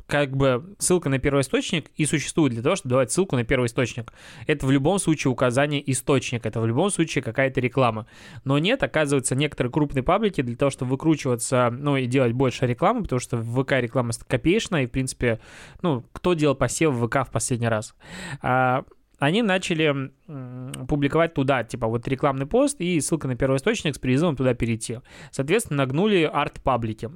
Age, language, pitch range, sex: 20-39, Russian, 125-150 Hz, male